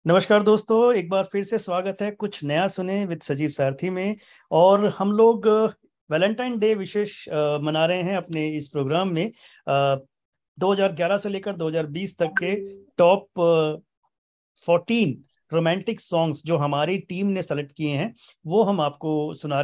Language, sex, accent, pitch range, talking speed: Hindi, male, native, 150-195 Hz, 150 wpm